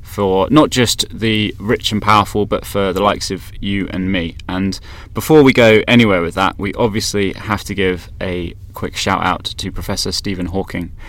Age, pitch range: 20-39, 95-110 Hz